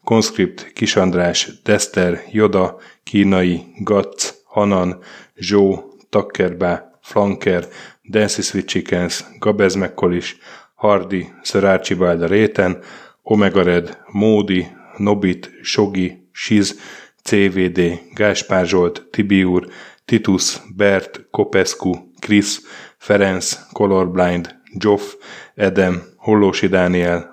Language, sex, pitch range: Hungarian, male, 90-105 Hz